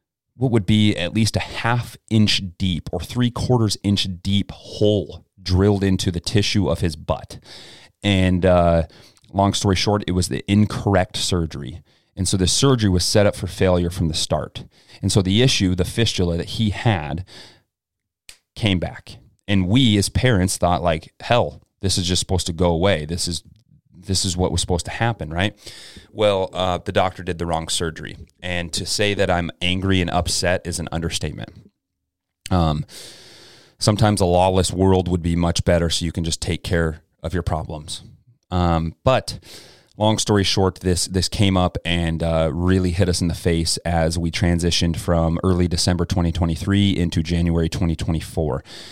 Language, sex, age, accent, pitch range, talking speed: English, male, 30-49, American, 85-100 Hz, 175 wpm